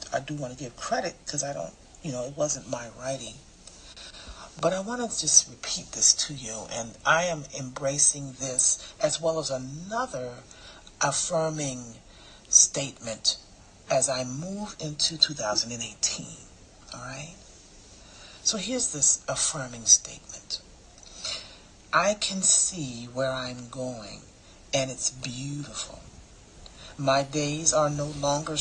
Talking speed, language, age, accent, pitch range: 130 wpm, English, 40-59, American, 125-160 Hz